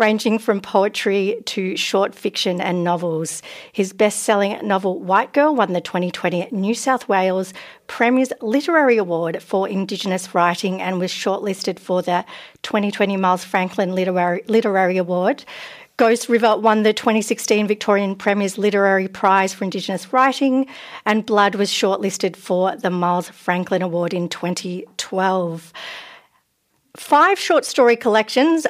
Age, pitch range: 50-69, 180-230 Hz